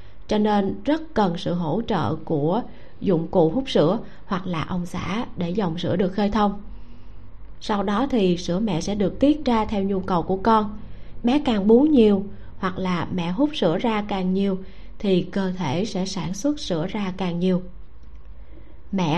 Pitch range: 175-220 Hz